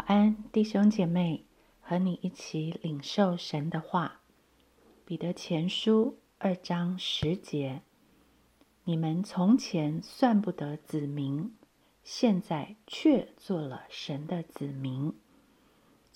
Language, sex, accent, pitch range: Chinese, female, native, 160-215 Hz